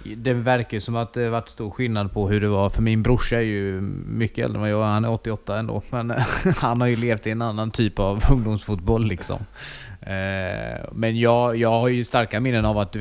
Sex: male